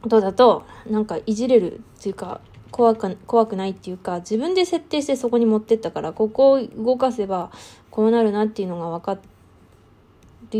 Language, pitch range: Japanese, 195-245 Hz